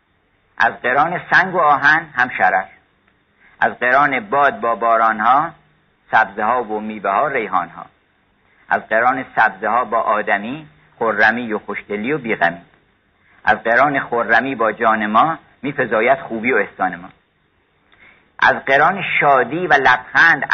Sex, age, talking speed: male, 50-69, 125 wpm